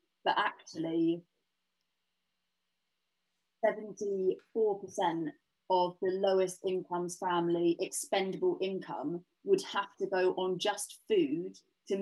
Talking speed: 90 wpm